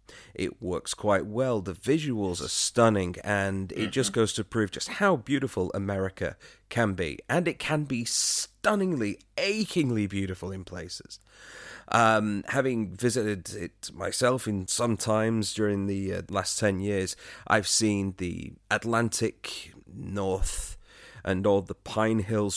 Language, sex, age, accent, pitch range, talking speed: English, male, 30-49, British, 100-120 Hz, 140 wpm